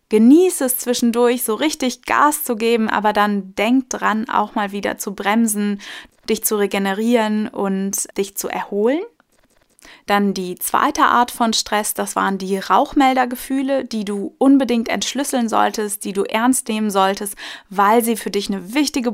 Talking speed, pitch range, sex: 155 wpm, 200-240 Hz, female